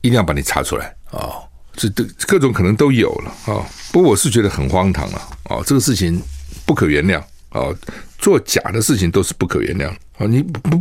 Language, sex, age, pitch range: Chinese, male, 60-79, 90-125 Hz